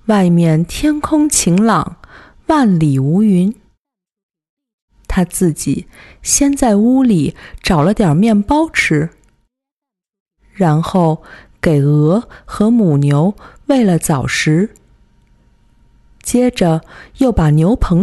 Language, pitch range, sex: Chinese, 170-245 Hz, female